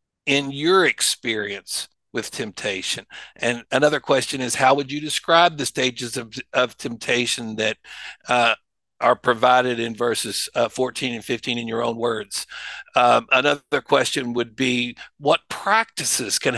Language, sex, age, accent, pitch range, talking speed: English, male, 60-79, American, 125-160 Hz, 145 wpm